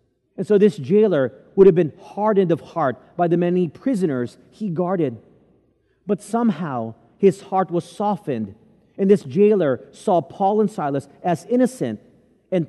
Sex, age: male, 40-59